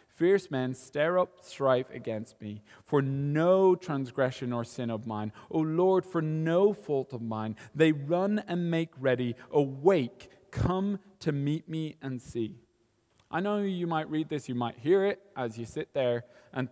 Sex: male